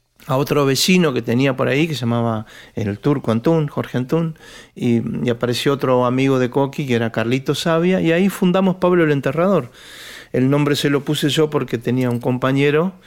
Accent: Argentinian